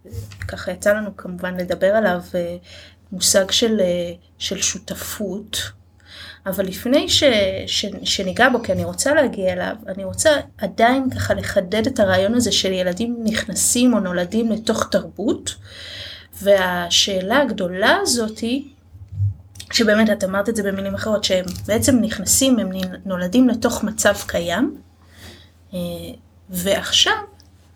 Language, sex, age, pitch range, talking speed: Hebrew, female, 30-49, 175-230 Hz, 120 wpm